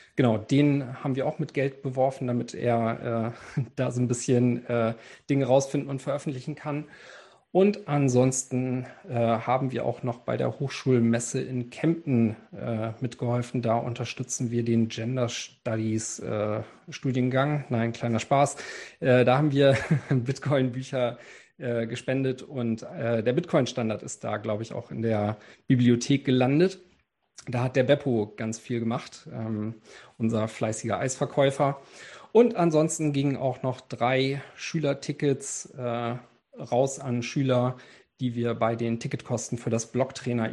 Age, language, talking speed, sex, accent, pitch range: 40-59, German, 140 wpm, male, German, 115-140 Hz